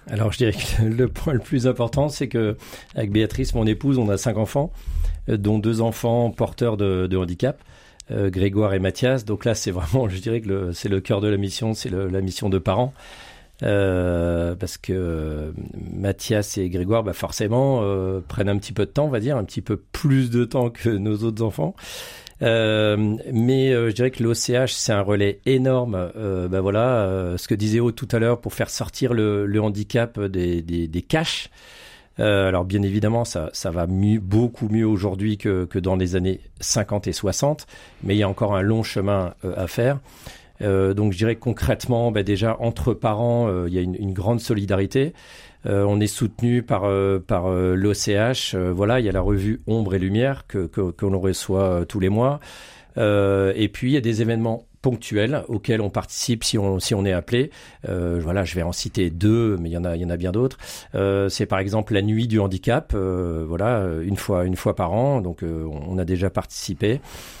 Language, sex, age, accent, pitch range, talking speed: French, male, 40-59, French, 95-115 Hz, 215 wpm